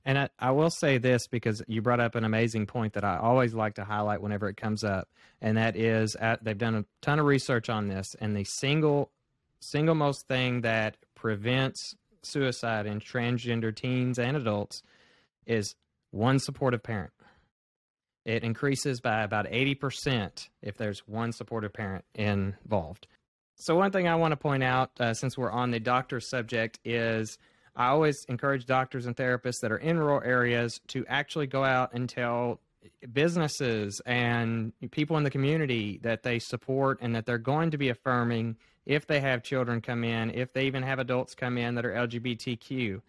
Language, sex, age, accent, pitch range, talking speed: English, male, 20-39, American, 115-135 Hz, 180 wpm